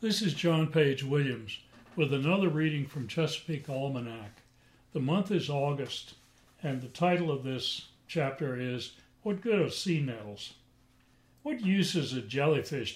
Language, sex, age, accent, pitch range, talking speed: English, male, 60-79, American, 125-160 Hz, 150 wpm